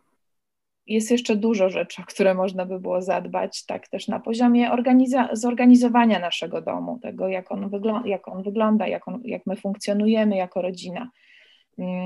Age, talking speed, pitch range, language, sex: 20-39, 160 wpm, 190-235 Hz, Polish, female